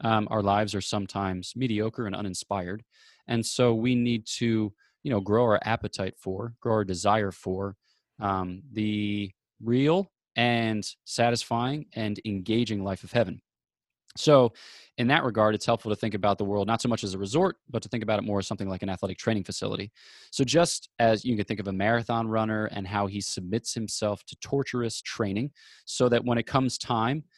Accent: American